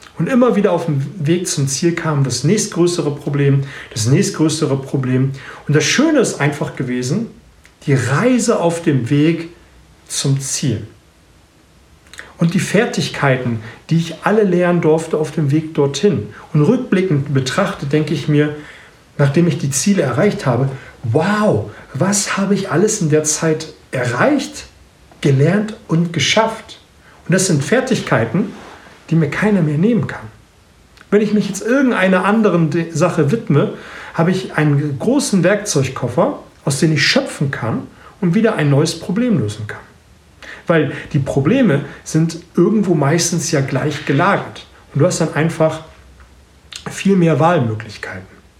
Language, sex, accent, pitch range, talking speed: German, male, German, 140-185 Hz, 145 wpm